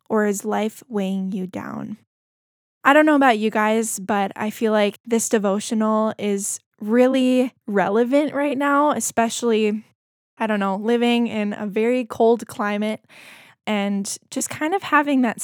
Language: English